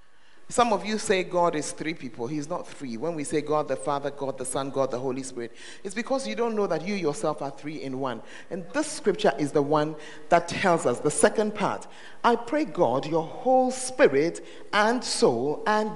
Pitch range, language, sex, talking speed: 145-230 Hz, English, male, 215 wpm